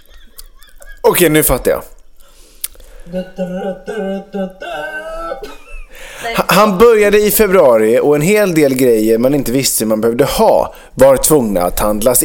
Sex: male